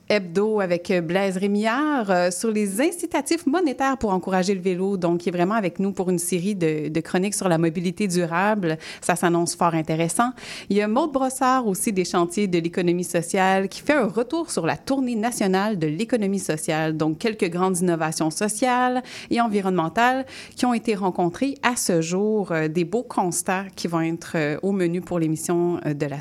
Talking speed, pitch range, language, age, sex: 185 wpm, 175-225 Hz, French, 30-49, female